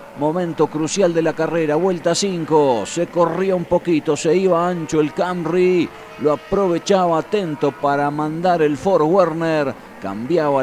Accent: Argentinian